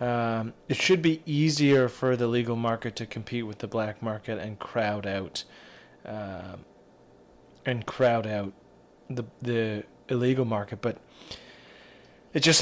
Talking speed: 140 wpm